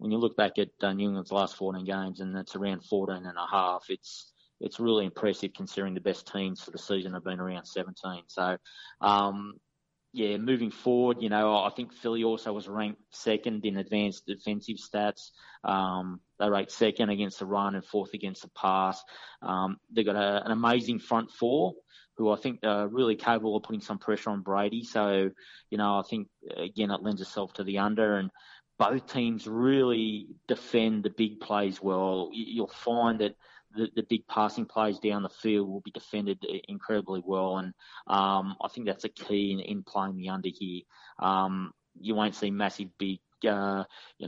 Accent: Australian